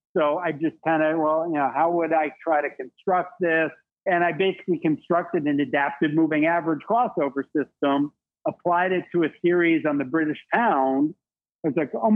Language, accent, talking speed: English, American, 190 wpm